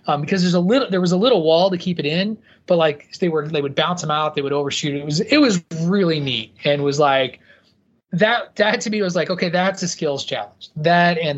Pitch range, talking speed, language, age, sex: 145-180 Hz, 255 wpm, English, 20-39, male